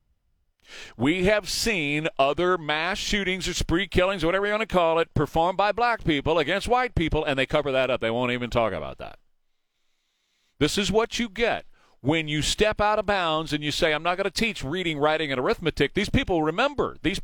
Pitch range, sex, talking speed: 140-200 Hz, male, 210 wpm